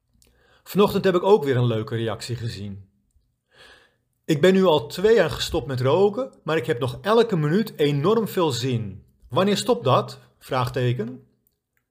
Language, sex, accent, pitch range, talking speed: Dutch, male, Dutch, 115-165 Hz, 155 wpm